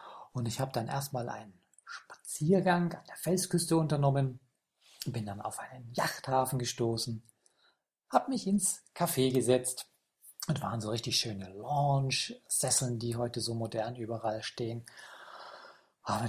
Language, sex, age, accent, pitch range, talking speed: German, male, 40-59, German, 120-165 Hz, 130 wpm